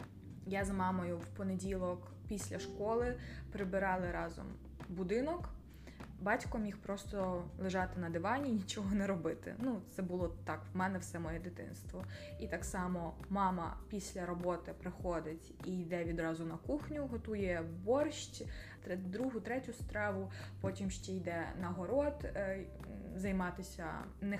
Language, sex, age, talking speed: Ukrainian, female, 20-39, 130 wpm